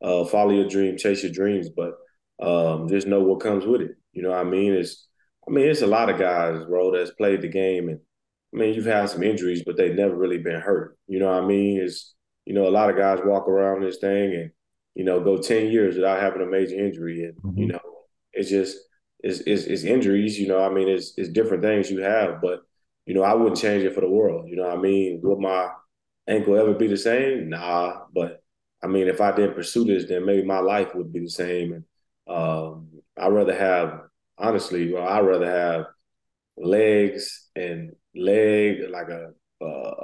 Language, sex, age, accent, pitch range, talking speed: English, male, 20-39, American, 90-100 Hz, 220 wpm